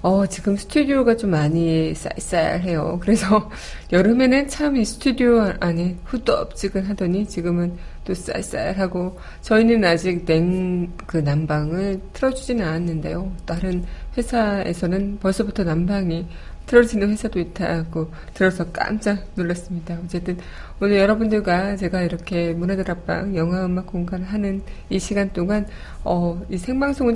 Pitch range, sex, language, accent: 175-210 Hz, female, Korean, native